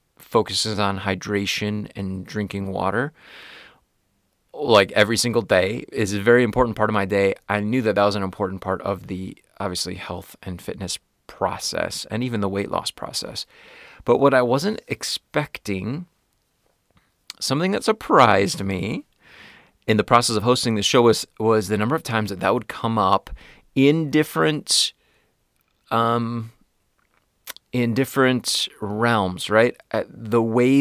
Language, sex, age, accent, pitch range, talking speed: English, male, 30-49, American, 100-125 Hz, 145 wpm